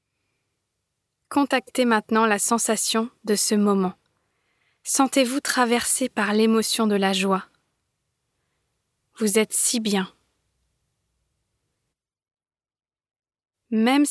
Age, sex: 20-39, female